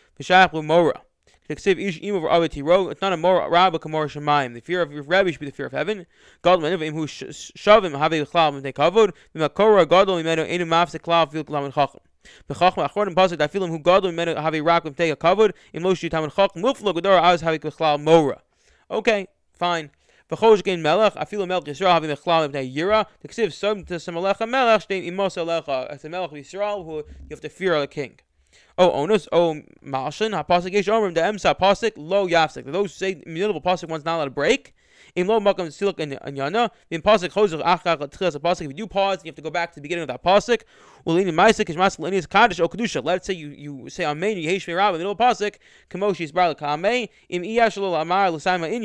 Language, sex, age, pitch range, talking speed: English, male, 20-39, 155-195 Hz, 160 wpm